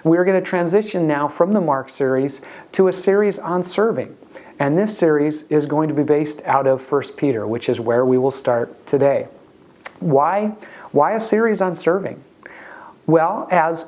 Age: 40-59